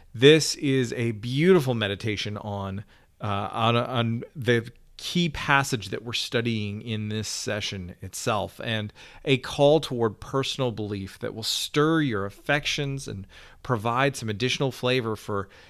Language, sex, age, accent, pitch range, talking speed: English, male, 40-59, American, 105-155 Hz, 140 wpm